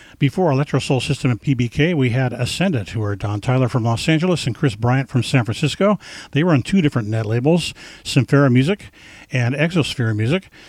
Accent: American